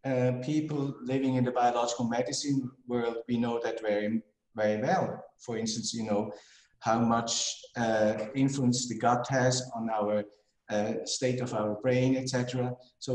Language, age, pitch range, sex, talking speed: English, 50-69, 115-140 Hz, male, 155 wpm